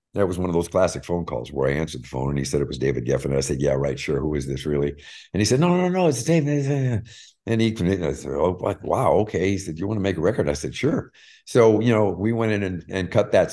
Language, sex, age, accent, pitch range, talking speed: English, male, 50-69, American, 80-105 Hz, 295 wpm